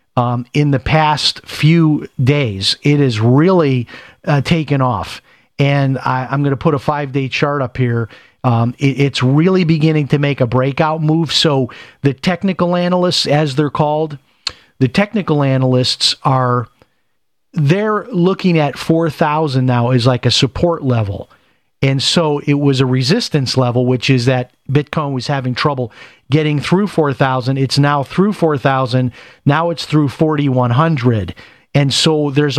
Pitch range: 130-155 Hz